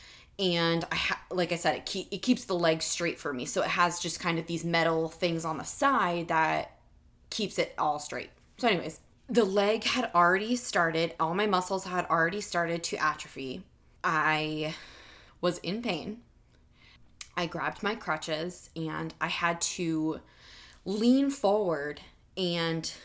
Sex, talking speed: female, 155 wpm